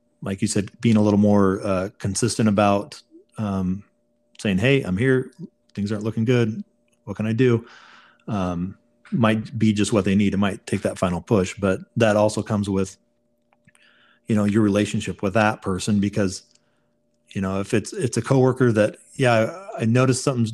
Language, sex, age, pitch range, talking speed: English, male, 40-59, 100-120 Hz, 180 wpm